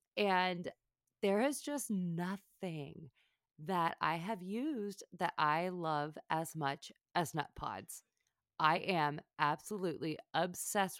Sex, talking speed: female, 115 wpm